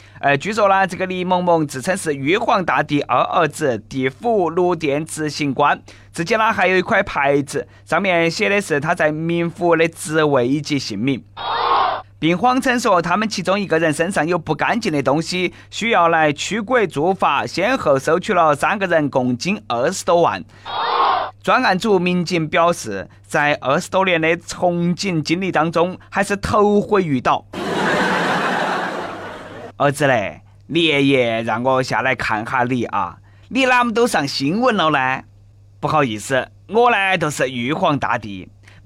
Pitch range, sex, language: 135-190 Hz, male, Chinese